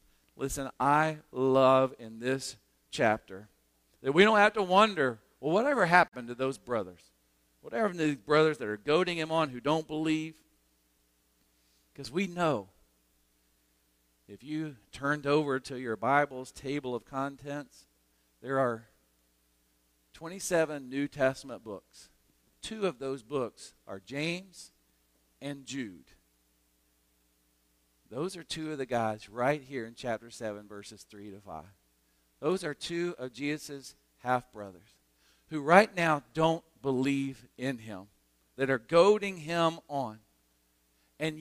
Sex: male